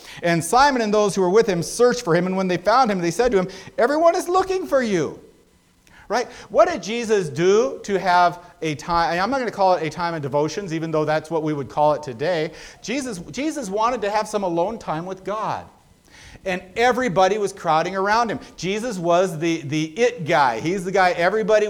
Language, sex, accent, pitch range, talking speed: English, male, American, 170-220 Hz, 220 wpm